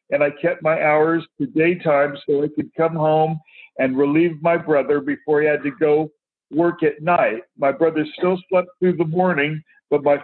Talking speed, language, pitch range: 195 wpm, English, 145-180 Hz